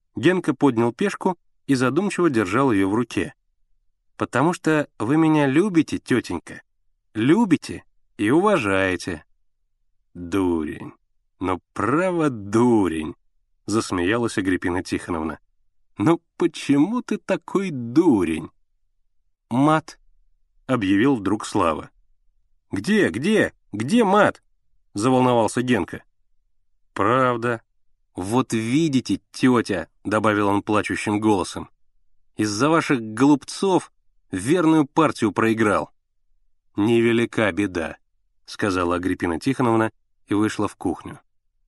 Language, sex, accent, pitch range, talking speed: Russian, male, native, 100-155 Hz, 95 wpm